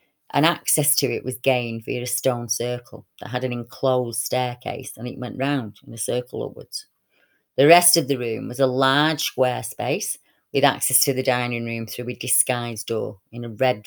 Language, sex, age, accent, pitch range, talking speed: English, female, 30-49, British, 125-155 Hz, 200 wpm